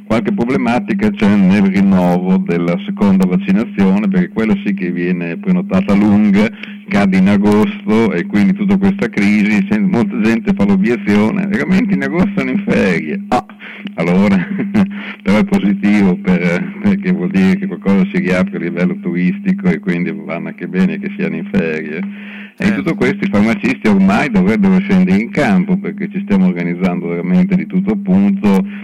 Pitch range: 185-205 Hz